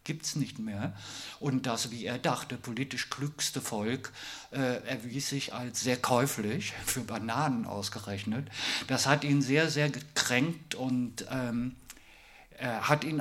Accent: German